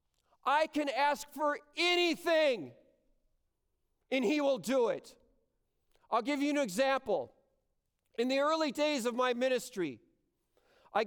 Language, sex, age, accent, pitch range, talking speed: English, male, 40-59, American, 220-310 Hz, 125 wpm